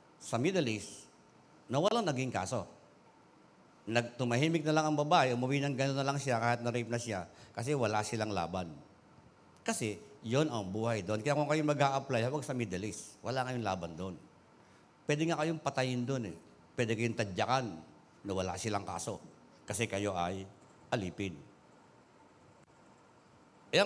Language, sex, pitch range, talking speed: Filipino, male, 115-160 Hz, 150 wpm